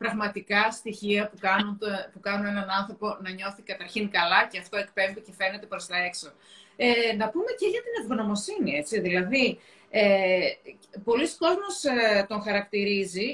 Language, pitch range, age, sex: Greek, 205-315 Hz, 30-49, female